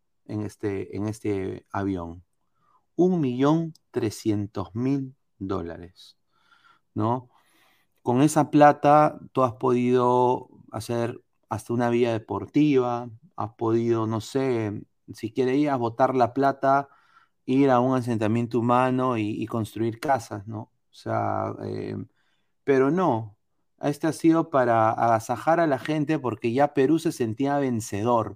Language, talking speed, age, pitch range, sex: Spanish, 125 wpm, 30-49, 110-145 Hz, male